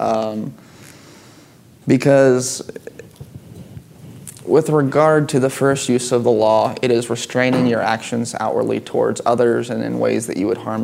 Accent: American